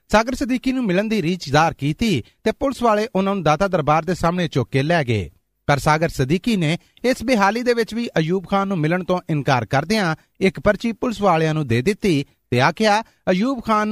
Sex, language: male, Punjabi